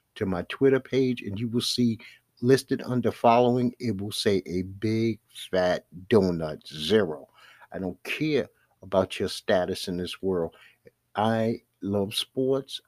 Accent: American